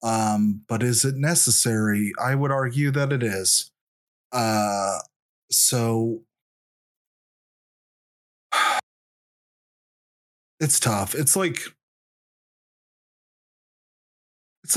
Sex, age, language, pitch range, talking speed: male, 30-49, English, 105-130 Hz, 75 wpm